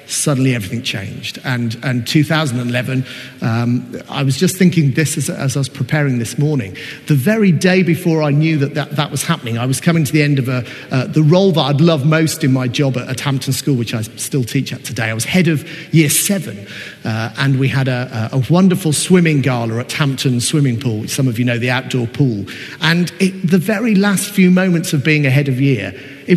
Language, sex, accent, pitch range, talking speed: English, male, British, 130-165 Hz, 225 wpm